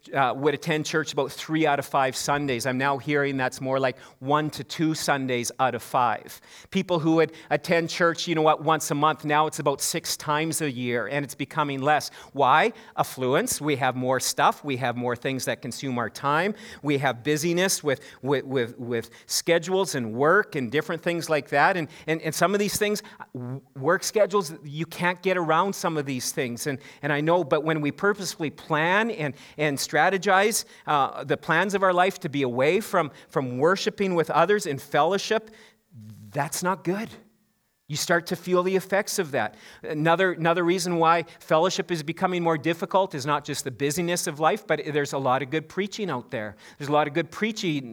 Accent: American